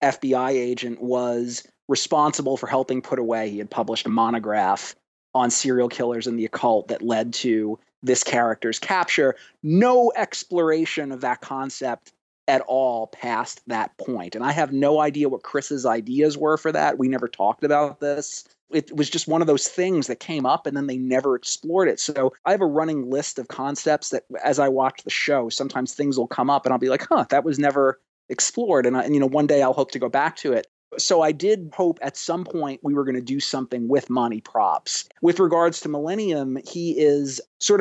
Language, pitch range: English, 125-150 Hz